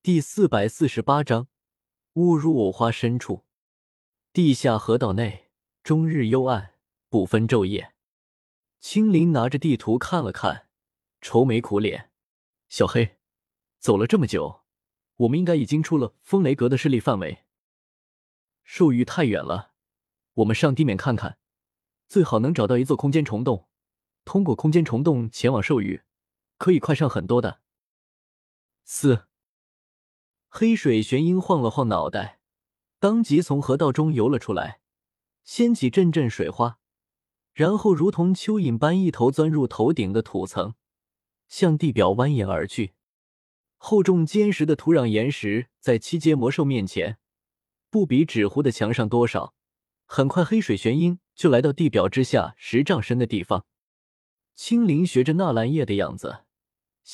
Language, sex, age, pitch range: Chinese, male, 20-39, 115-165 Hz